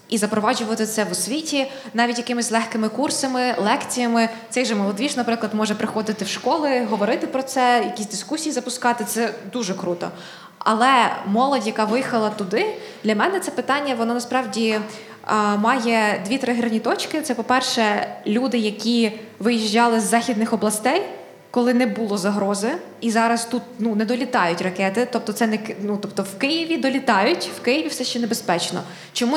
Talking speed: 150 wpm